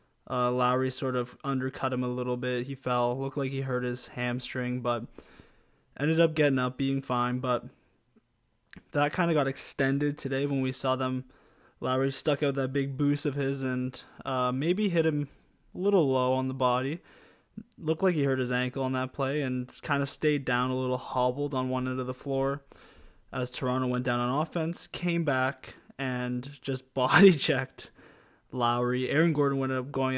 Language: English